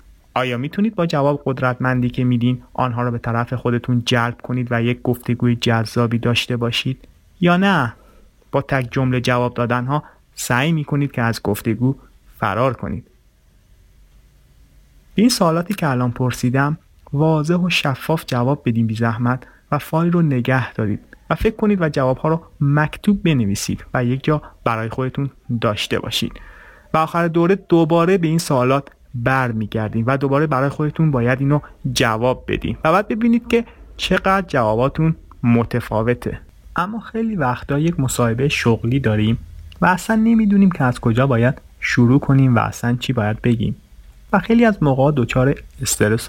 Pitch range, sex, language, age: 115-155 Hz, male, Persian, 30-49